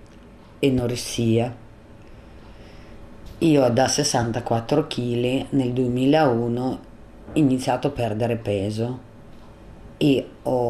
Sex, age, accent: female, 40-59, native